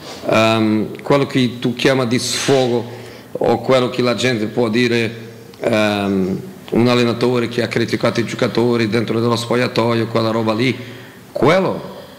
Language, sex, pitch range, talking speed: Italian, male, 115-125 Hz, 135 wpm